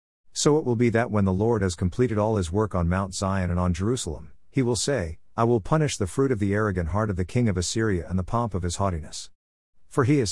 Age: 50-69